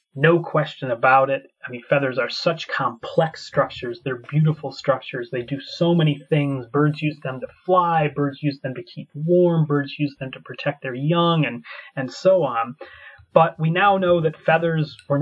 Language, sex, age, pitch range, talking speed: Bulgarian, male, 30-49, 140-175 Hz, 190 wpm